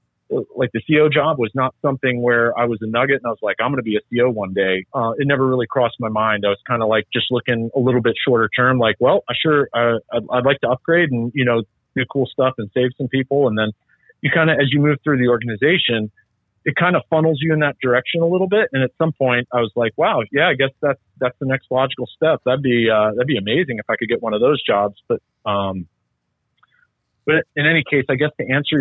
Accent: American